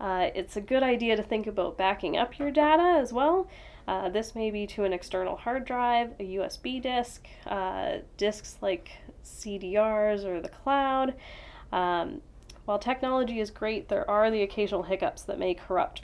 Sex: female